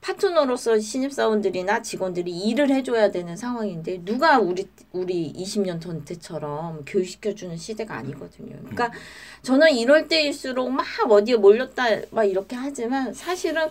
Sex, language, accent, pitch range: female, Korean, native, 190-295 Hz